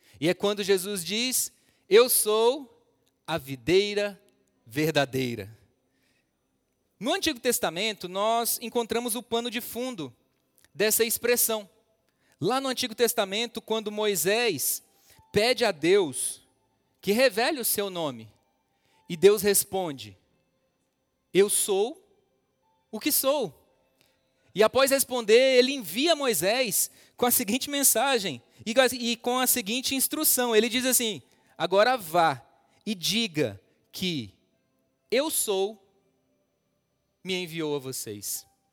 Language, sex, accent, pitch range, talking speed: Portuguese, male, Brazilian, 180-240 Hz, 110 wpm